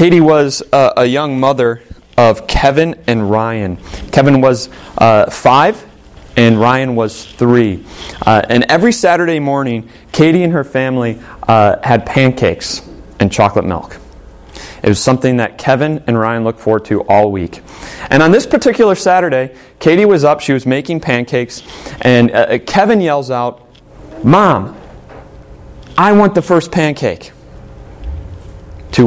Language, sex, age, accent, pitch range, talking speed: English, male, 30-49, American, 100-145 Hz, 130 wpm